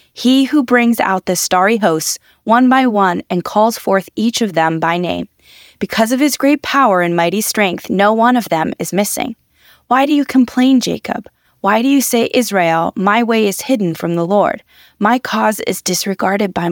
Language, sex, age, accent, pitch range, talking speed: English, female, 20-39, American, 185-245 Hz, 195 wpm